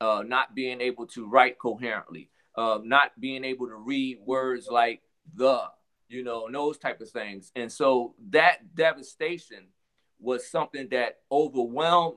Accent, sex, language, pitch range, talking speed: American, male, English, 120-145 Hz, 150 wpm